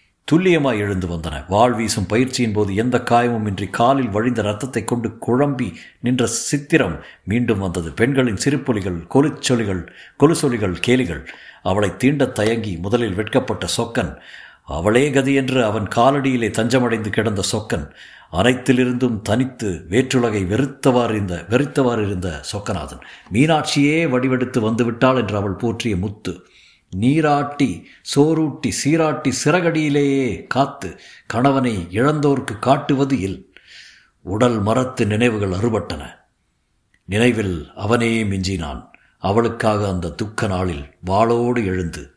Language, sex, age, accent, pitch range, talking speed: Tamil, male, 50-69, native, 90-125 Hz, 100 wpm